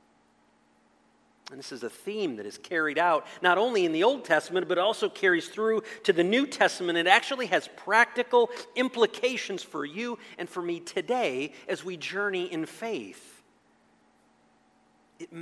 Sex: male